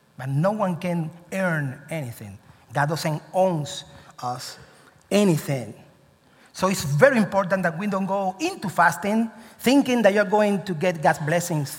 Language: English